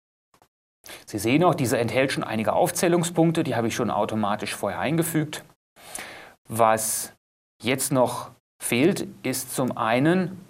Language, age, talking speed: German, 30-49, 125 wpm